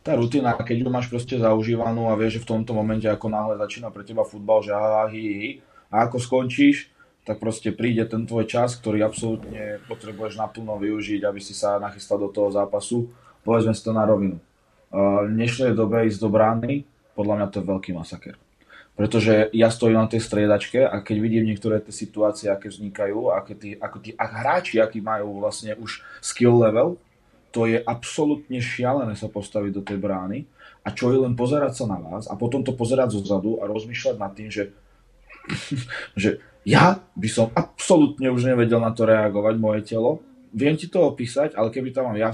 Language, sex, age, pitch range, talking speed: Czech, male, 20-39, 105-120 Hz, 185 wpm